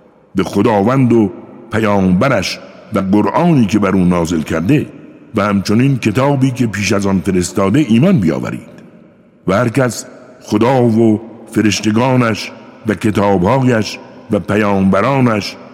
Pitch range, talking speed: 100-130 Hz, 120 wpm